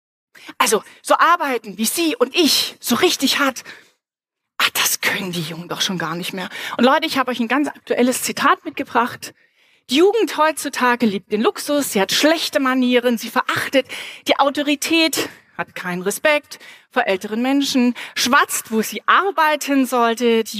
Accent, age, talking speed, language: German, 30-49, 160 wpm, German